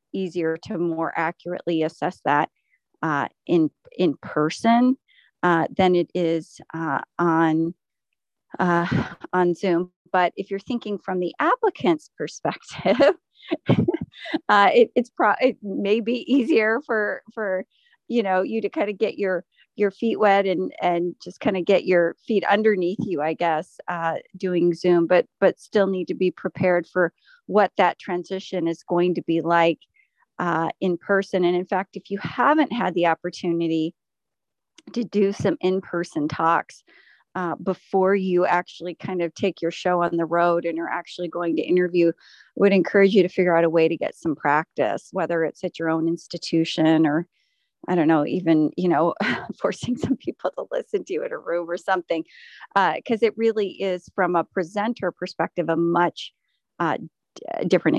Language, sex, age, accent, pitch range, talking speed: English, female, 30-49, American, 170-205 Hz, 170 wpm